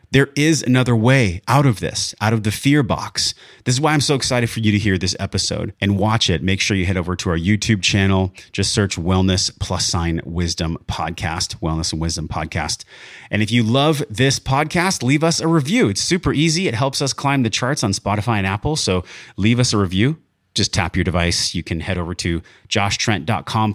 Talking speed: 215 wpm